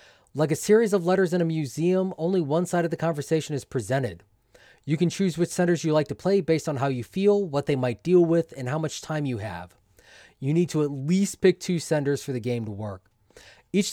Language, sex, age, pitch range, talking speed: English, male, 20-39, 125-175 Hz, 235 wpm